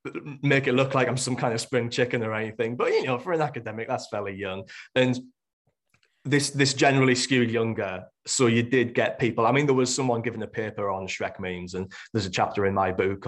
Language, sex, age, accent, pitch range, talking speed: English, male, 20-39, British, 100-125 Hz, 225 wpm